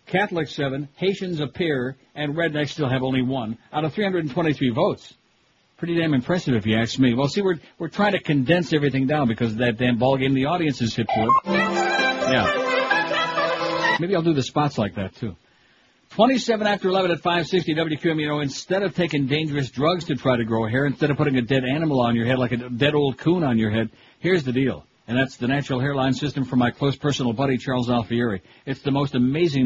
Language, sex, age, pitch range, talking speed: English, male, 60-79, 125-150 Hz, 225 wpm